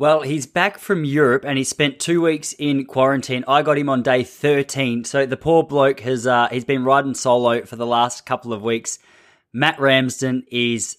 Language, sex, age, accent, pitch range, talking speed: English, male, 20-39, Australian, 115-140 Hz, 195 wpm